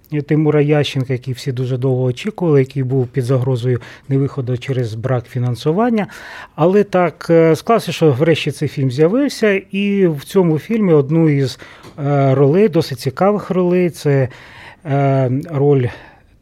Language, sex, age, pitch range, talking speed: Russian, male, 30-49, 130-155 Hz, 130 wpm